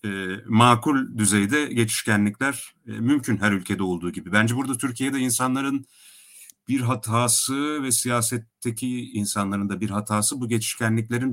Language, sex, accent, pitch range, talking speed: Turkish, male, native, 105-130 Hz, 120 wpm